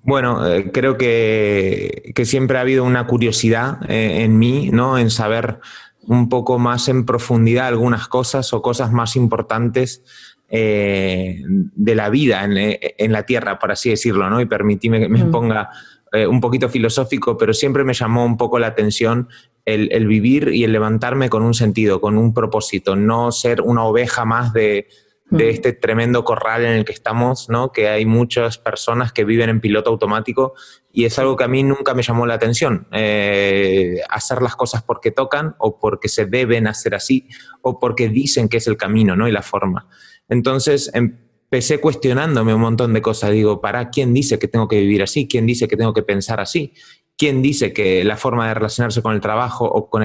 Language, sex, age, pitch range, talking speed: Spanish, male, 30-49, 110-125 Hz, 195 wpm